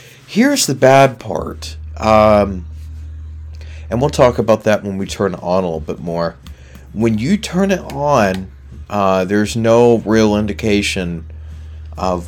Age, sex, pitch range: 40-59, male, 80-110 Hz